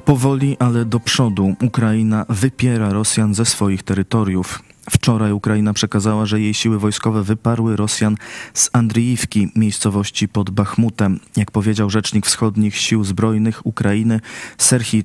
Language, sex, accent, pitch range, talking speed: Polish, male, native, 100-120 Hz, 130 wpm